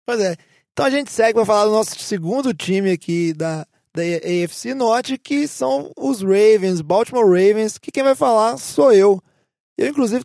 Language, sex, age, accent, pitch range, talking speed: Portuguese, male, 20-39, Brazilian, 170-210 Hz, 180 wpm